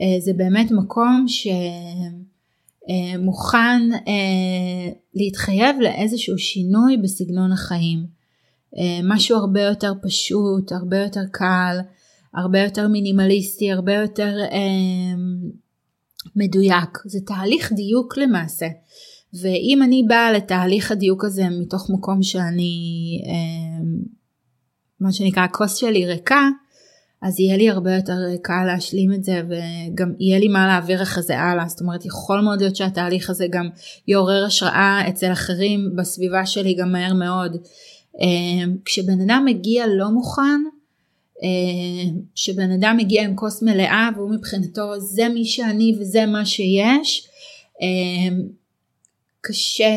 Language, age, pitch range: Hebrew, 20-39, 180-210 Hz